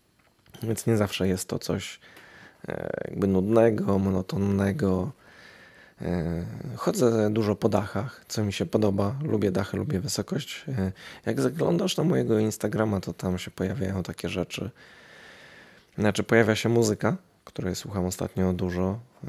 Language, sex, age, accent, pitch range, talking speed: Polish, male, 20-39, native, 95-110 Hz, 125 wpm